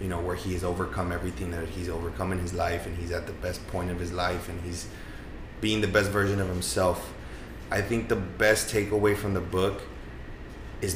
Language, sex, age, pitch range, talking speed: Spanish, male, 20-39, 90-100 Hz, 215 wpm